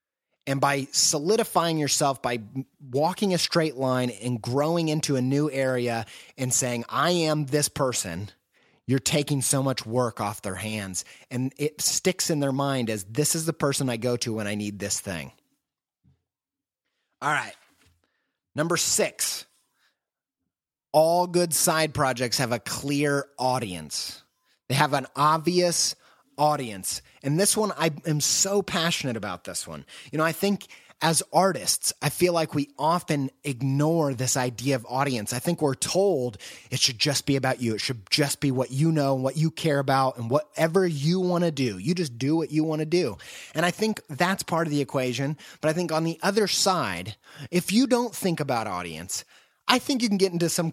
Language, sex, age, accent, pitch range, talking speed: English, male, 30-49, American, 125-165 Hz, 185 wpm